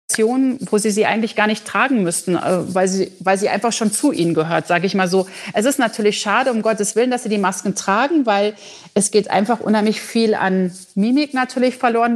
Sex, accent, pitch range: female, German, 190-230 Hz